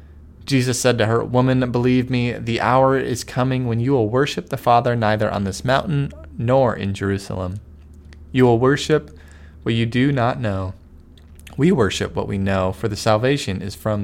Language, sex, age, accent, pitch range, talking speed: English, male, 20-39, American, 85-130 Hz, 180 wpm